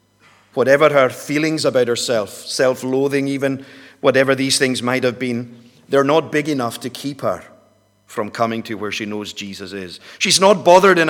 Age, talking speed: 50-69, 175 wpm